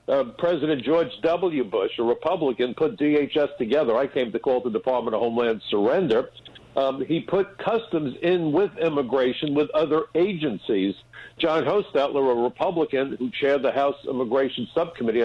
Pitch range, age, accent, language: 125-160 Hz, 60-79, American, English